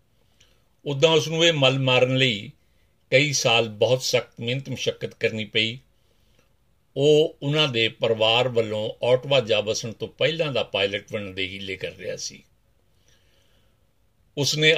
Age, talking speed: 50-69, 140 wpm